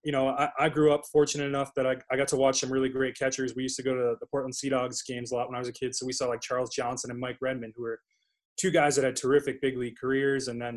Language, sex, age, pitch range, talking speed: English, male, 20-39, 120-140 Hz, 310 wpm